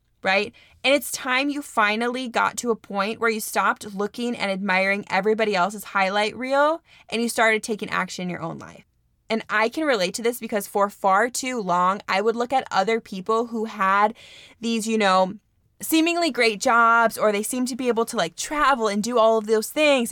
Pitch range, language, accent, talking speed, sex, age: 195-255 Hz, English, American, 205 wpm, female, 20-39